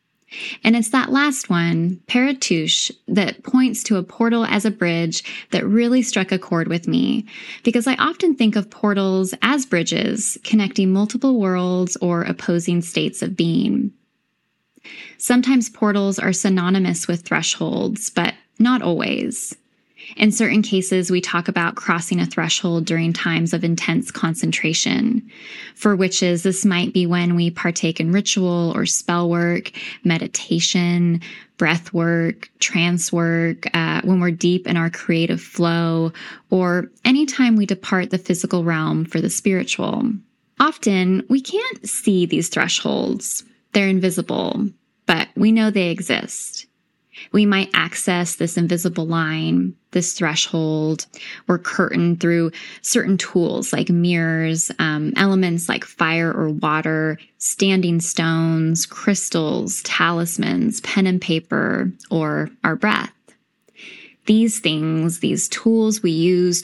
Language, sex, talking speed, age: English, female, 130 wpm, 10-29